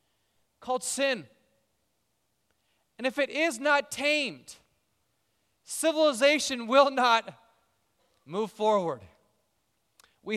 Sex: male